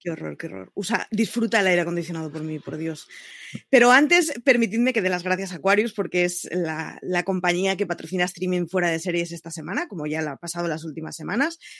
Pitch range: 170-235 Hz